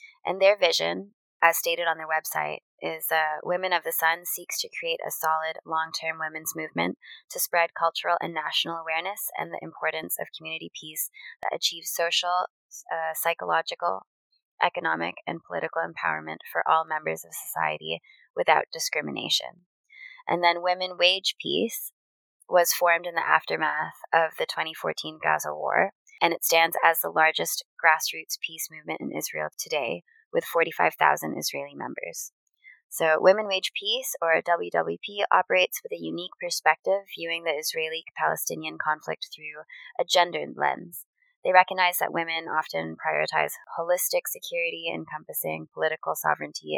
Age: 20-39